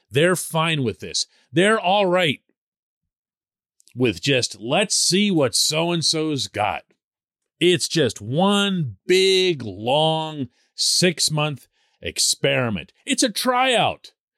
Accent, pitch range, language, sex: American, 135-200 Hz, English, male